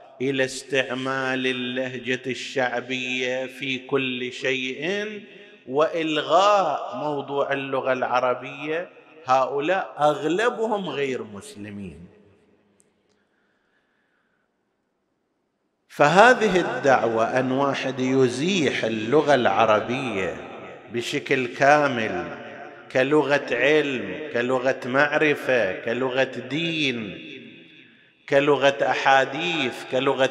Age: 50-69